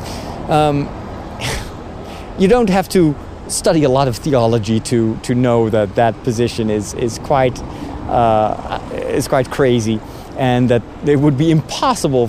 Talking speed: 140 wpm